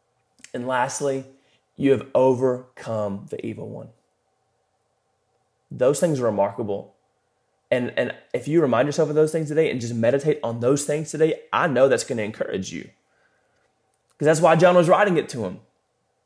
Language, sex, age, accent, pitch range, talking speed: English, male, 20-39, American, 125-160 Hz, 165 wpm